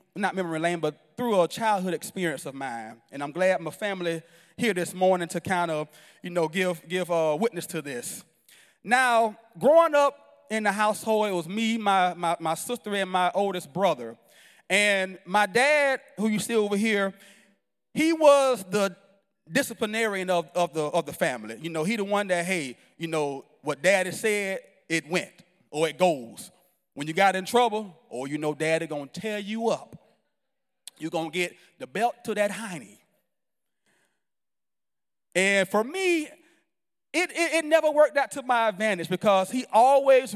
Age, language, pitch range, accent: 30-49, English, 175-245 Hz, American